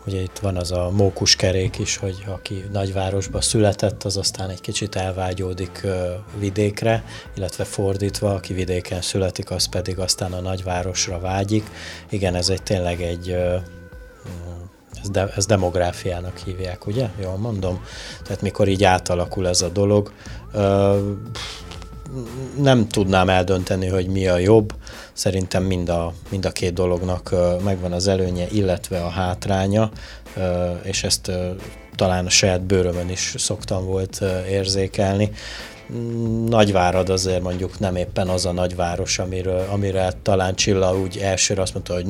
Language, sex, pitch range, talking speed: Hungarian, male, 90-100 Hz, 140 wpm